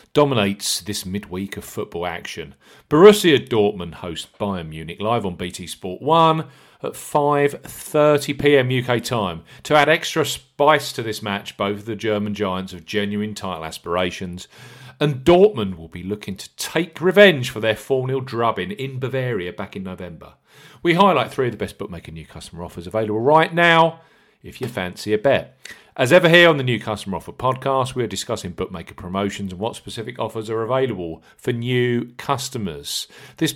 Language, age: English, 40-59